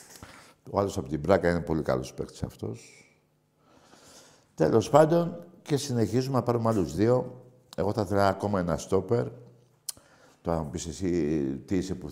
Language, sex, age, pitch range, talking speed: Greek, male, 60-79, 85-135 Hz, 155 wpm